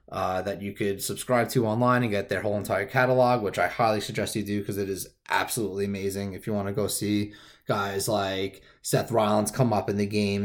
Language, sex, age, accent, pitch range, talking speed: English, male, 20-39, American, 100-115 Hz, 225 wpm